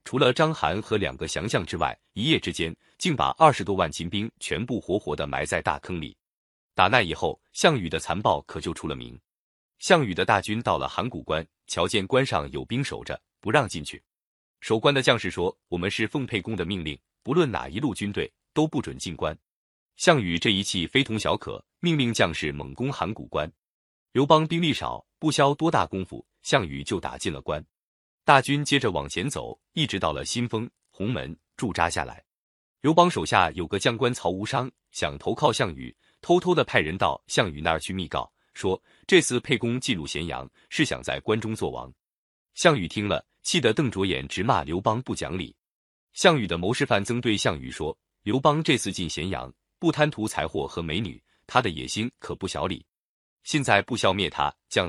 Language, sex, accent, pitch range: Chinese, male, native, 85-130 Hz